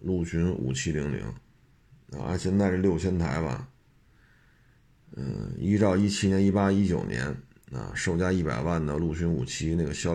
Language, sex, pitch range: Chinese, male, 85-100 Hz